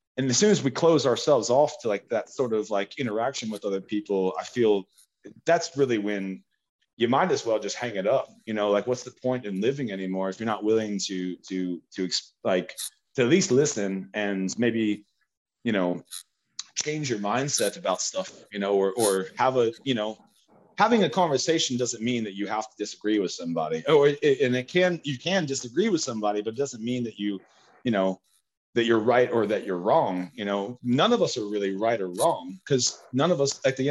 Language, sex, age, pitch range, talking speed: English, male, 30-49, 100-135 Hz, 220 wpm